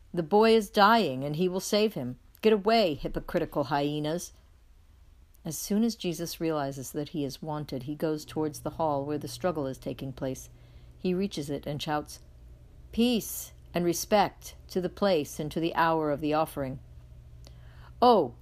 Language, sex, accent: English, female, American